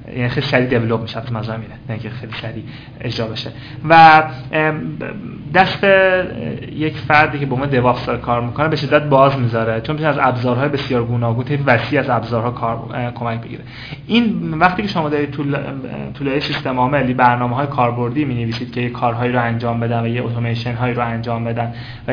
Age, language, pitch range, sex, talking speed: 20-39, Persian, 120-155 Hz, male, 170 wpm